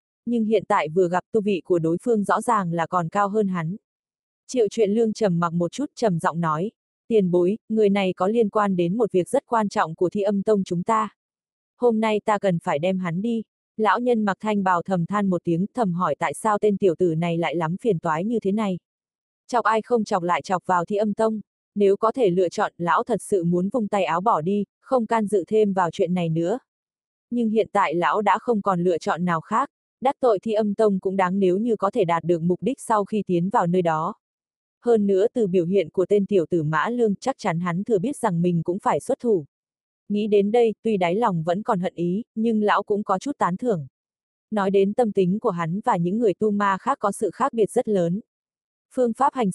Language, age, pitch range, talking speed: Vietnamese, 20-39, 180-220 Hz, 245 wpm